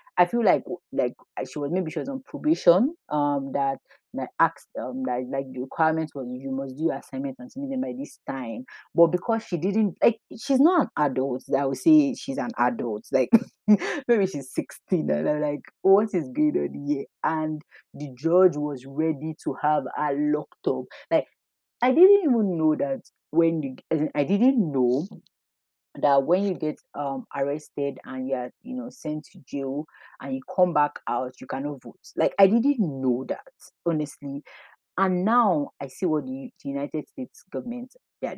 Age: 30-49